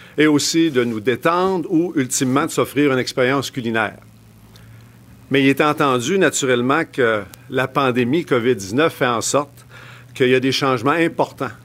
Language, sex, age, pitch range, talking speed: French, male, 50-69, 115-140 Hz, 155 wpm